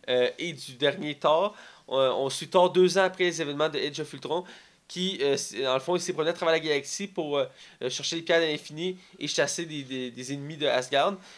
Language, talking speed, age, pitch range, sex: French, 235 wpm, 20-39, 130-170 Hz, male